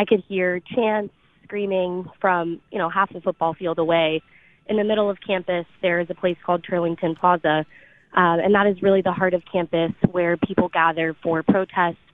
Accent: American